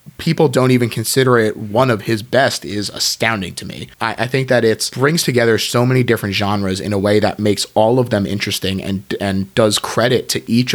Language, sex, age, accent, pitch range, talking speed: English, male, 30-49, American, 100-125 Hz, 220 wpm